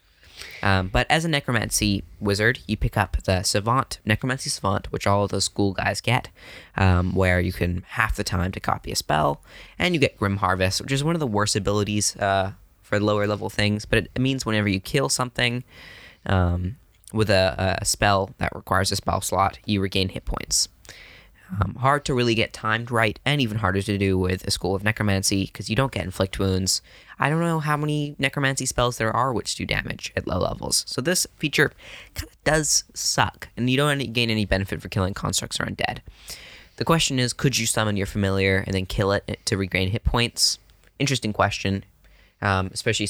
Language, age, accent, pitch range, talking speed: English, 10-29, American, 95-115 Hz, 200 wpm